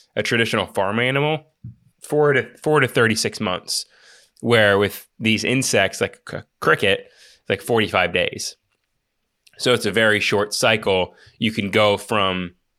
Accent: American